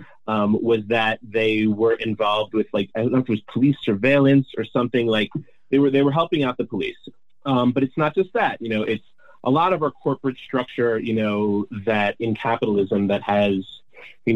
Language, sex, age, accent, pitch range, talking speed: English, male, 30-49, American, 105-135 Hz, 210 wpm